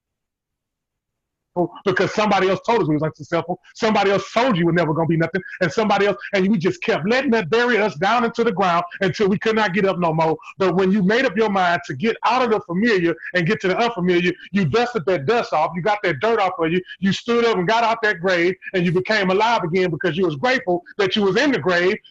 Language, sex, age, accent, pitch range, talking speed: English, male, 30-49, American, 175-230 Hz, 260 wpm